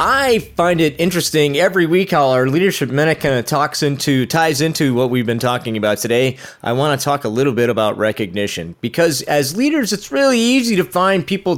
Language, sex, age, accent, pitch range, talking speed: English, male, 30-49, American, 115-160 Hz, 205 wpm